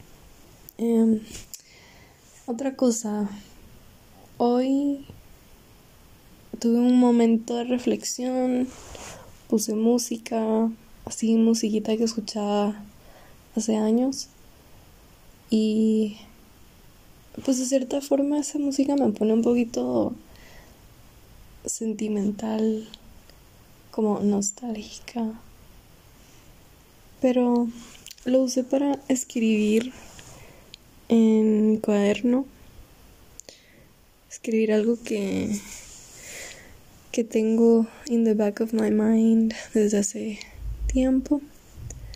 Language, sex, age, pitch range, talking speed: Spanish, female, 20-39, 215-255 Hz, 75 wpm